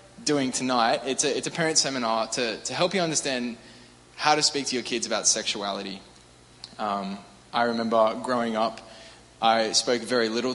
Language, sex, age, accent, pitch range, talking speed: English, male, 20-39, Australian, 115-140 Hz, 170 wpm